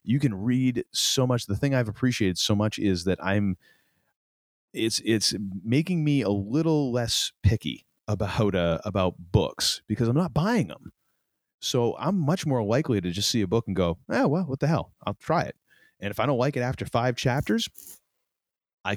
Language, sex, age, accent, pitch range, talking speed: English, male, 30-49, American, 95-125 Hz, 195 wpm